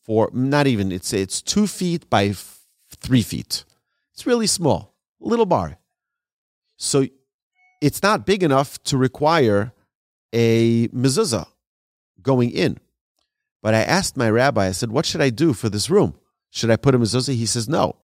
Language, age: English, 40-59